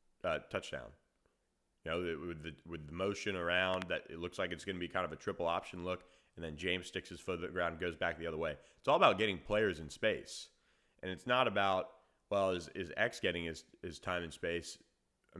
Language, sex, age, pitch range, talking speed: English, male, 30-49, 85-95 Hz, 240 wpm